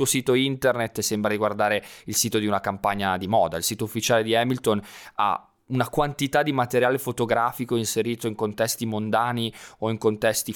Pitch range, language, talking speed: 110-155 Hz, Italian, 175 wpm